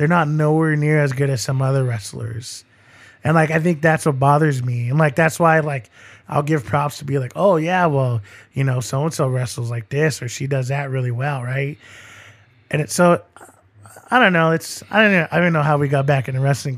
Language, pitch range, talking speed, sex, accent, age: English, 125-160 Hz, 235 wpm, male, American, 20-39